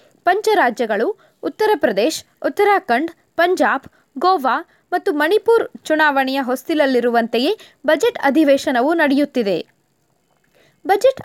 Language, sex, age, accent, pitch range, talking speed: Kannada, female, 20-39, native, 270-370 Hz, 75 wpm